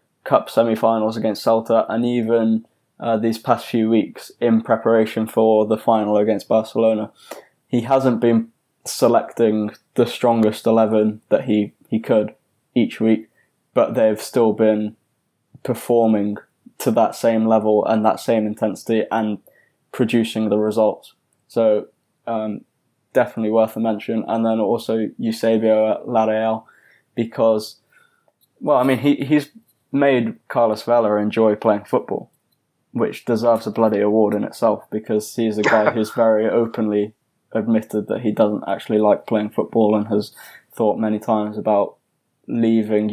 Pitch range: 110-115 Hz